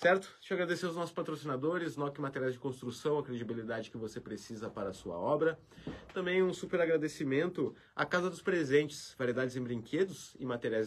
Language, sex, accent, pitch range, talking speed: Portuguese, male, Brazilian, 115-155 Hz, 180 wpm